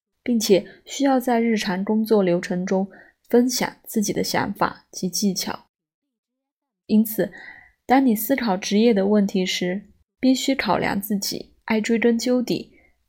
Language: Chinese